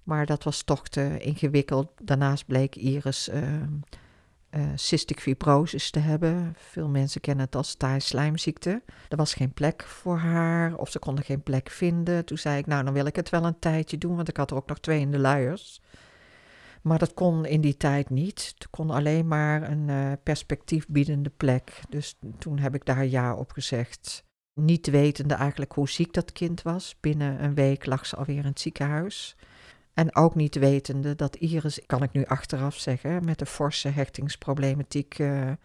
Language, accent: Dutch, Dutch